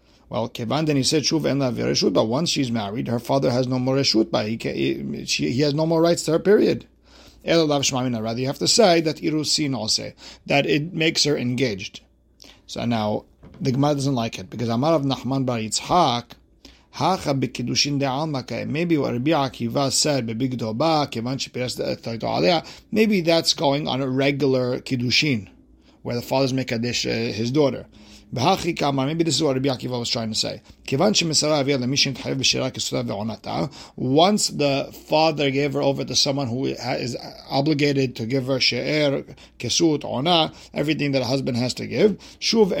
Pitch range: 125-155 Hz